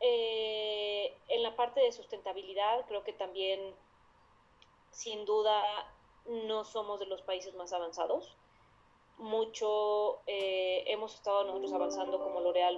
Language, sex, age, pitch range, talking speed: Spanish, female, 20-39, 180-215 Hz, 120 wpm